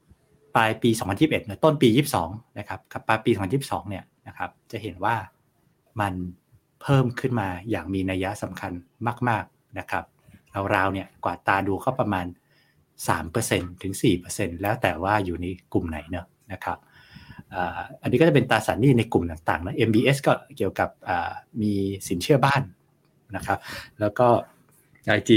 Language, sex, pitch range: Thai, male, 100-130 Hz